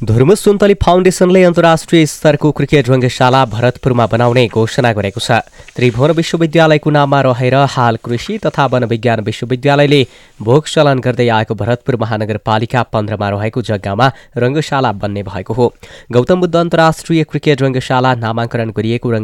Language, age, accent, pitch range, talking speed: English, 20-39, Indian, 110-135 Hz, 110 wpm